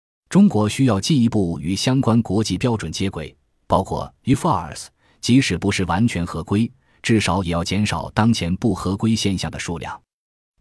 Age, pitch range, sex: 20-39, 85-115 Hz, male